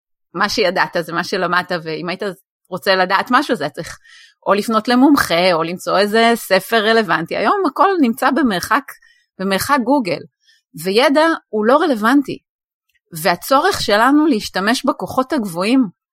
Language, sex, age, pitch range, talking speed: Hebrew, female, 30-49, 190-280 Hz, 135 wpm